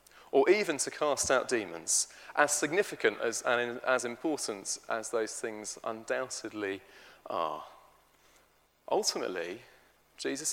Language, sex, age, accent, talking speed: English, male, 30-49, British, 110 wpm